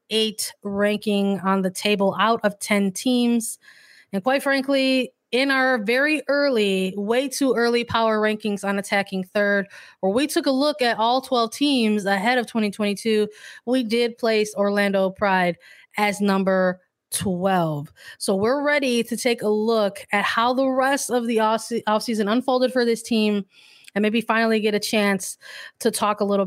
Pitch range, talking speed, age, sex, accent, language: 205-240 Hz, 165 wpm, 20-39, female, American, English